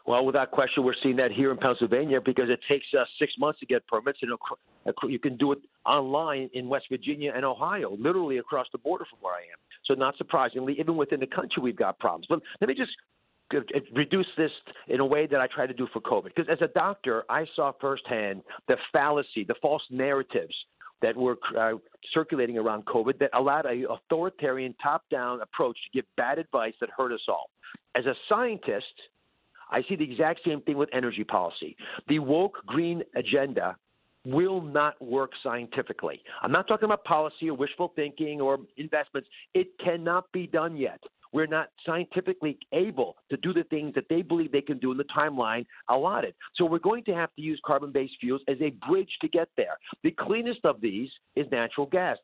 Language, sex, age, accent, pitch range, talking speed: English, male, 50-69, American, 130-165 Hz, 195 wpm